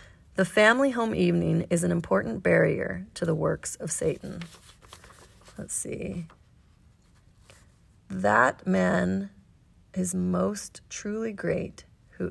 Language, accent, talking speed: English, American, 105 wpm